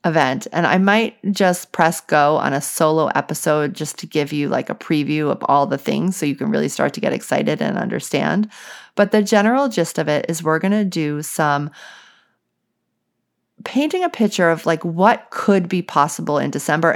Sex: female